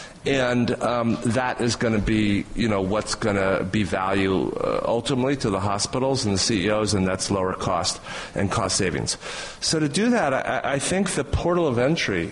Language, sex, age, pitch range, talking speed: English, male, 40-59, 100-120 Hz, 195 wpm